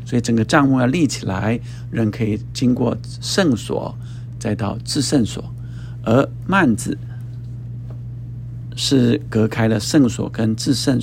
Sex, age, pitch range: male, 50-69, 115-125 Hz